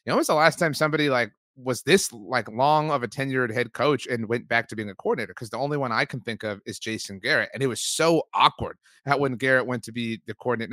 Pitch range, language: 115-150 Hz, English